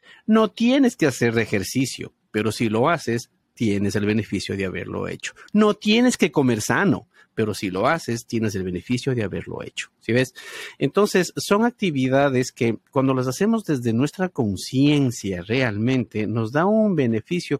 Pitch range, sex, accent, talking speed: 110-145 Hz, male, Mexican, 160 wpm